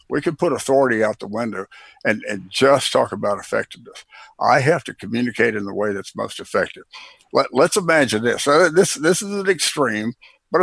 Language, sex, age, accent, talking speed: English, male, 60-79, American, 190 wpm